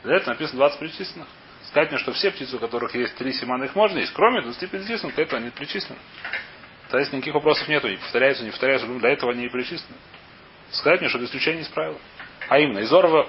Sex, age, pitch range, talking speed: male, 30-49, 115-145 Hz, 235 wpm